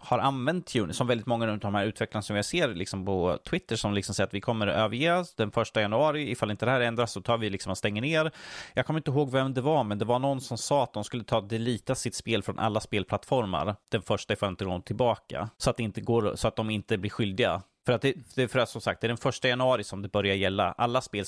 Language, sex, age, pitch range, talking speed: Swedish, male, 30-49, 100-125 Hz, 280 wpm